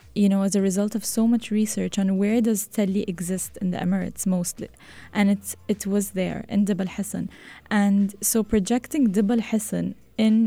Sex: female